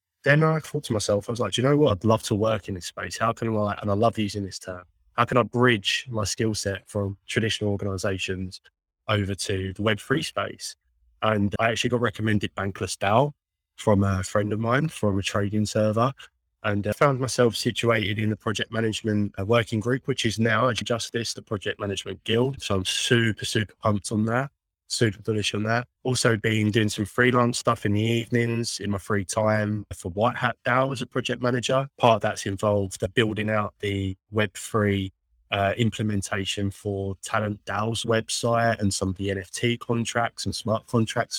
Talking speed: 200 wpm